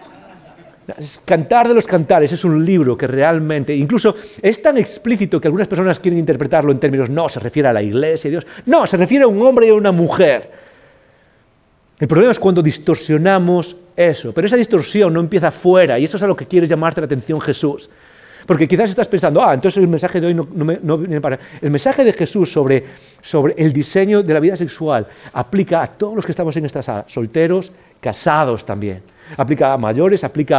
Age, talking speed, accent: 40-59, 200 wpm, Spanish